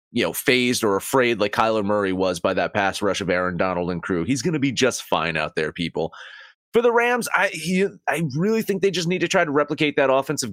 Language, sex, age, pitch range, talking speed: English, male, 30-49, 110-145 Hz, 245 wpm